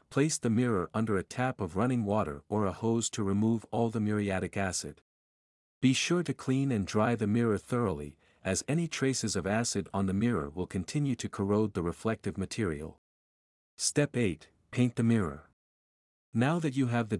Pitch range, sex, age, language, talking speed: 95-120 Hz, male, 50-69, English, 180 wpm